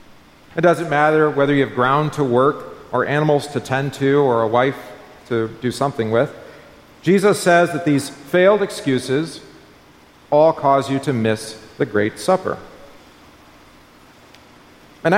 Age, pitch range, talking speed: 40-59, 120-165 Hz, 140 wpm